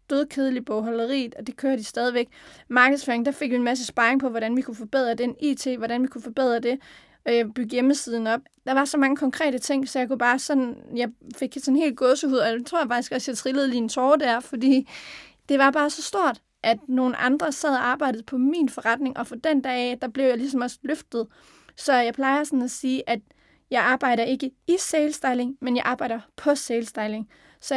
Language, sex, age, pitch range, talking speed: Danish, female, 30-49, 235-270 Hz, 225 wpm